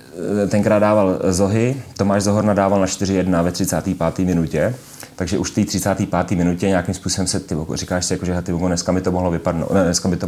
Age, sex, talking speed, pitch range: 30-49, male, 195 wpm, 85-95 Hz